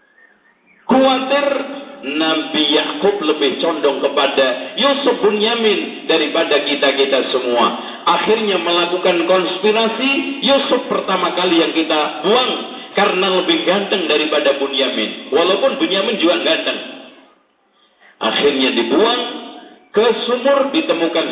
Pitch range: 165-255 Hz